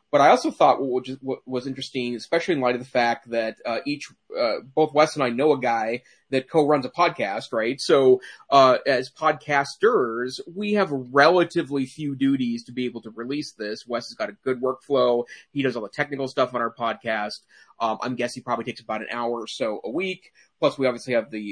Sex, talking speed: male, 220 wpm